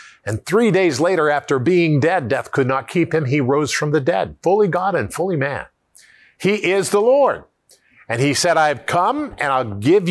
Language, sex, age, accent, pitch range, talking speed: English, male, 50-69, American, 130-185 Hz, 200 wpm